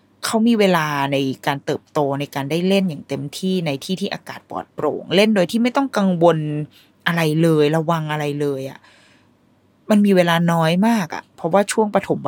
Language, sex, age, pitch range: Thai, female, 20-39, 150-200 Hz